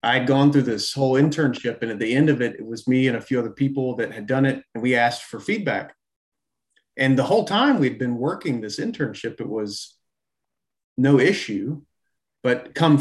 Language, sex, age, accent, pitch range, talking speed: English, male, 30-49, American, 115-150 Hz, 205 wpm